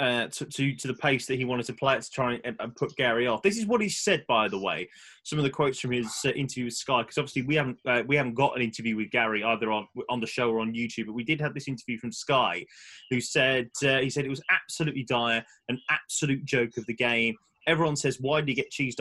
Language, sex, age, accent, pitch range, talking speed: English, male, 20-39, British, 120-155 Hz, 275 wpm